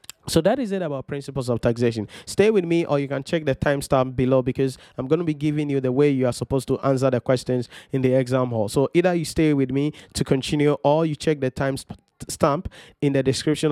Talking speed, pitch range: 240 wpm, 135-165 Hz